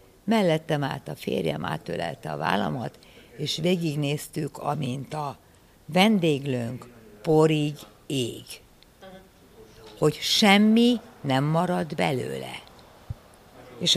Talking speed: 85 wpm